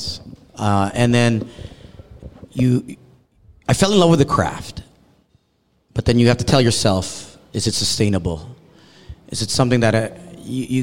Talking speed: 145 wpm